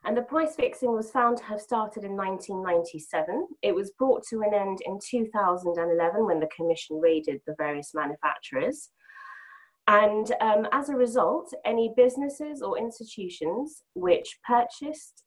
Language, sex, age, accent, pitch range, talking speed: English, female, 20-39, British, 180-245 Hz, 145 wpm